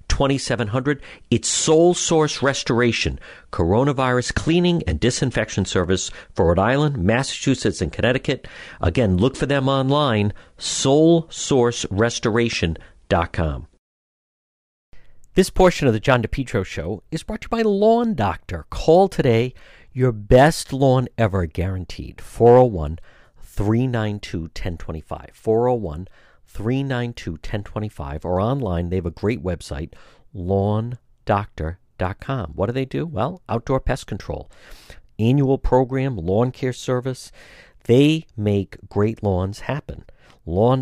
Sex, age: male, 50-69